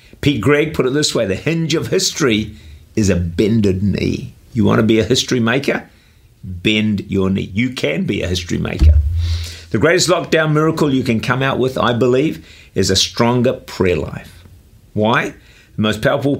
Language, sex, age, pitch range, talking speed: English, male, 50-69, 90-120 Hz, 185 wpm